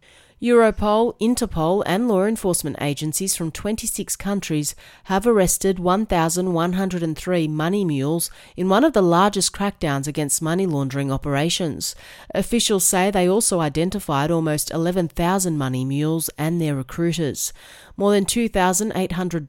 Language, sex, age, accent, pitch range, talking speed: English, female, 40-59, Australian, 150-195 Hz, 120 wpm